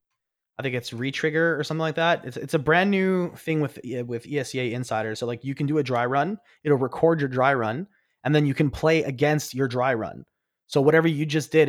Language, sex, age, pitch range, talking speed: English, male, 20-39, 120-150 Hz, 230 wpm